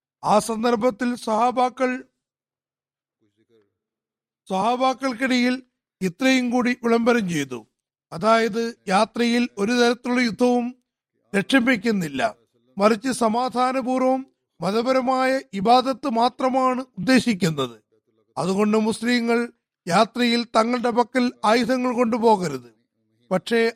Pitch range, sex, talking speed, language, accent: 190-250 Hz, male, 70 wpm, Malayalam, native